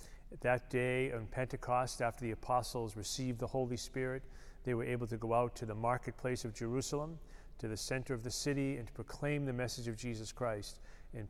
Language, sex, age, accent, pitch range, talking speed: English, male, 40-59, American, 110-125 Hz, 195 wpm